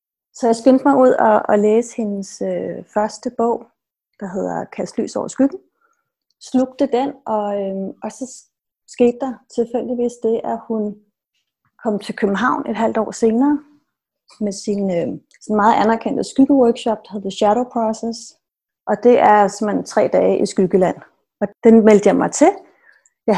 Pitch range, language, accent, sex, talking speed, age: 205-250 Hz, Danish, native, female, 160 wpm, 30-49